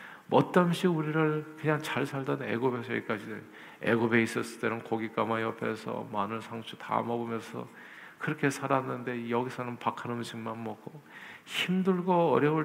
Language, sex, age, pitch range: Korean, male, 50-69, 110-150 Hz